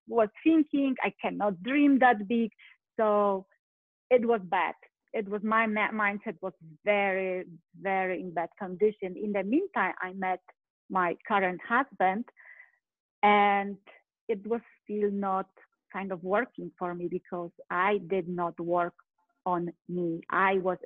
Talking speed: 140 wpm